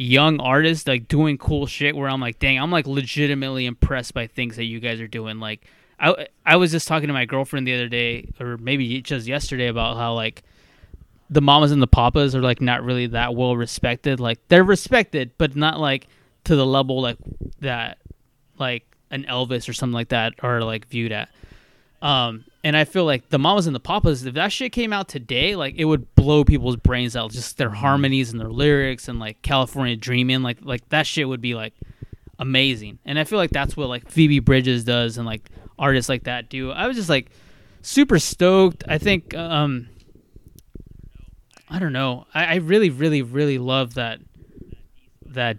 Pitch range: 120-145 Hz